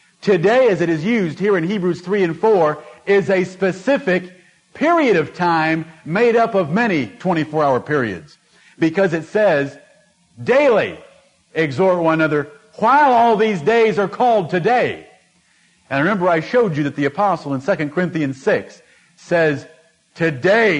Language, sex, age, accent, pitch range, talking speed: English, male, 50-69, American, 150-190 Hz, 150 wpm